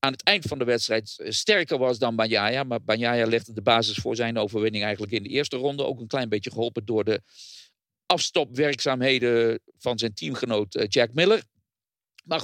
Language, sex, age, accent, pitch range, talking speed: English, male, 50-69, Dutch, 115-160 Hz, 180 wpm